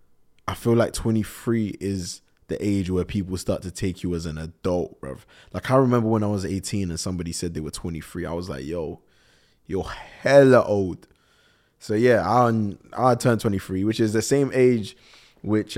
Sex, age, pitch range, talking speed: male, 20-39, 90-105 Hz, 185 wpm